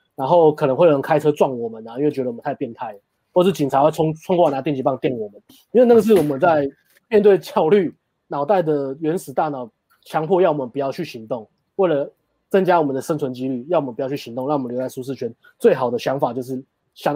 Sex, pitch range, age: male, 130-170 Hz, 20-39